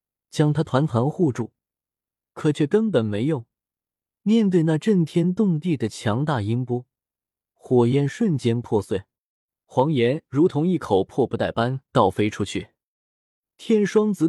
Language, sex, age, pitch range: Chinese, male, 20-39, 115-170 Hz